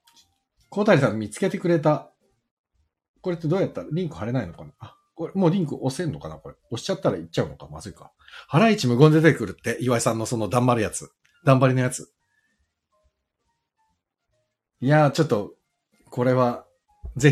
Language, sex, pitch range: Japanese, male, 105-165 Hz